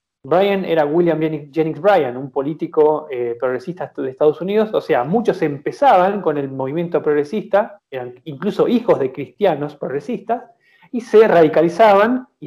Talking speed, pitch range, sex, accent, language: 145 wpm, 155-225 Hz, male, Argentinian, Spanish